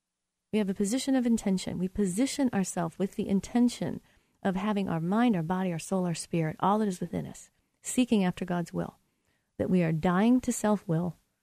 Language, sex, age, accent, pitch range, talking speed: English, female, 40-59, American, 175-215 Hz, 195 wpm